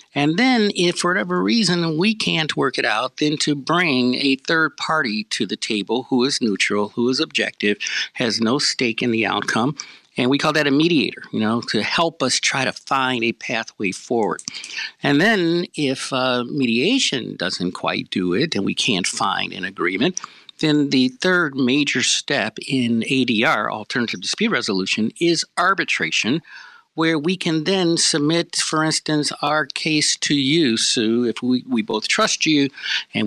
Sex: male